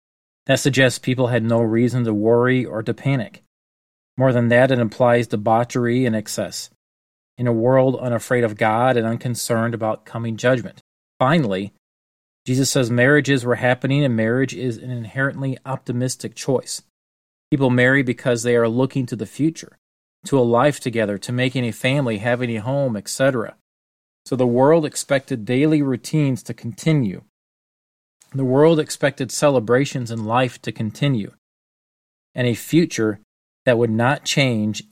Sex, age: male, 40-59